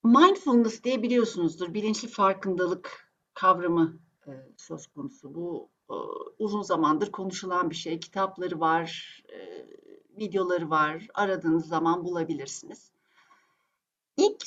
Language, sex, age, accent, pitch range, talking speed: Turkish, female, 60-79, native, 180-250 Hz, 90 wpm